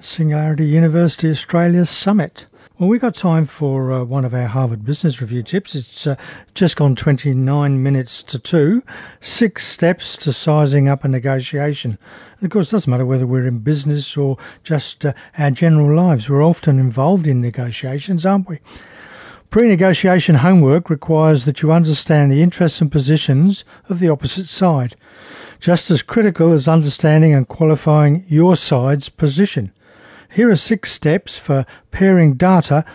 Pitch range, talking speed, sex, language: 140-170 Hz, 155 wpm, male, English